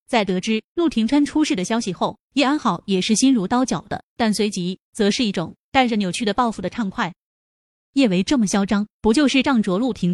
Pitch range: 195-255 Hz